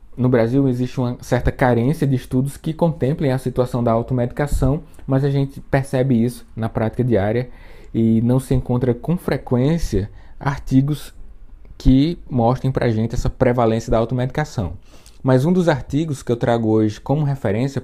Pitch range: 115-140 Hz